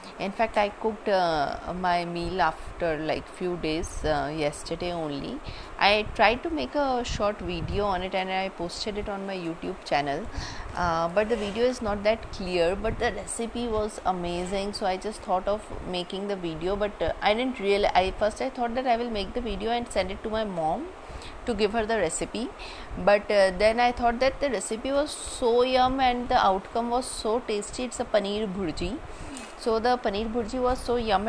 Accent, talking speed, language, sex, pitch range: native, 205 wpm, Hindi, female, 180-225 Hz